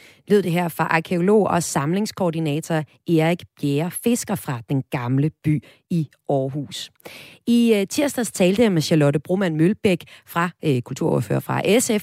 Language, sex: Danish, female